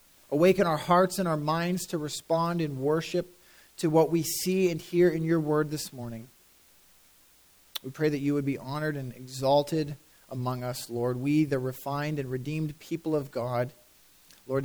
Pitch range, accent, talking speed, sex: 140-180 Hz, American, 170 wpm, male